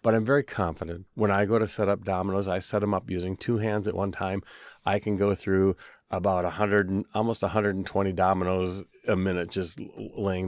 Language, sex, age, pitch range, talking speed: English, male, 40-59, 95-115 Hz, 195 wpm